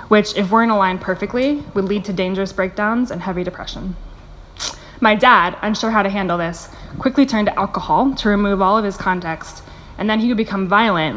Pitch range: 185-225 Hz